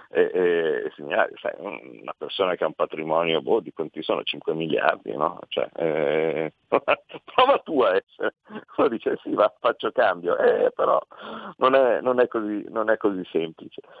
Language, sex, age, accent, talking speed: Italian, male, 50-69, native, 170 wpm